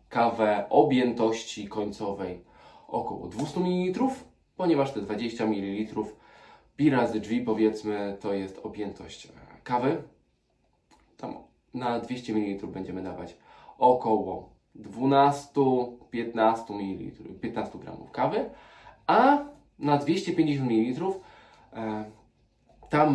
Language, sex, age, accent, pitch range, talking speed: Polish, male, 20-39, native, 105-130 Hz, 95 wpm